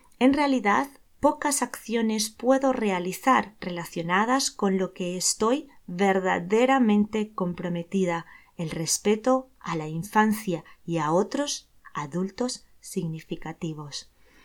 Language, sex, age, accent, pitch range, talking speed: Spanish, female, 20-39, Spanish, 180-245 Hz, 95 wpm